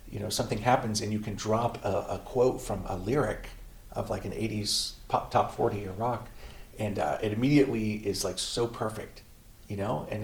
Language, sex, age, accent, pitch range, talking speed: English, male, 50-69, American, 100-125 Hz, 200 wpm